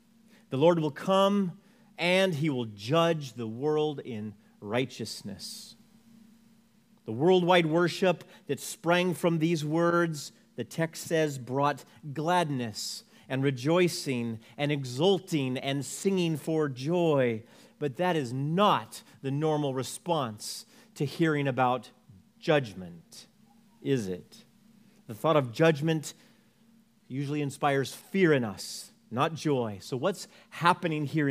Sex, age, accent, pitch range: male, 40-59, American, 135-195 Hz